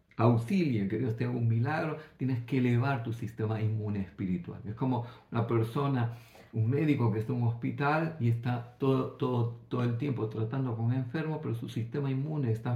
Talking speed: 185 wpm